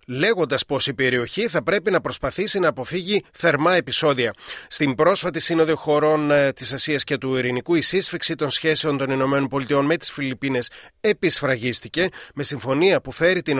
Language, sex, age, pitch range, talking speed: Greek, male, 30-49, 135-170 Hz, 160 wpm